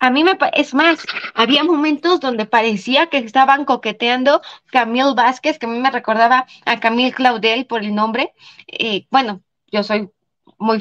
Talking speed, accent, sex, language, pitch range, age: 165 wpm, Mexican, female, Spanish, 230-275 Hz, 20-39